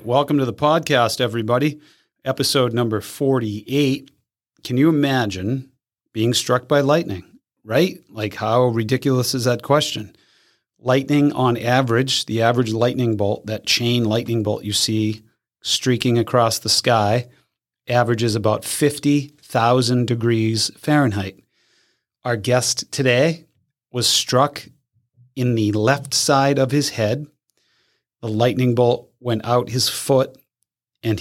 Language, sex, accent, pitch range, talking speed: English, male, American, 110-130 Hz, 125 wpm